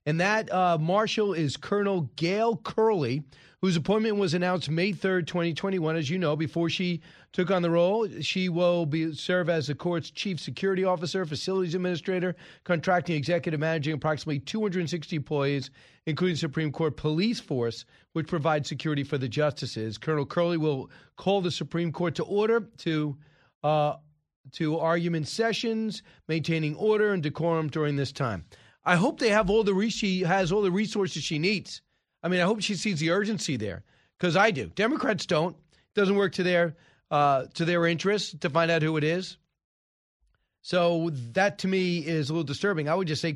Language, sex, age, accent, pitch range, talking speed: English, male, 40-59, American, 140-180 Hz, 180 wpm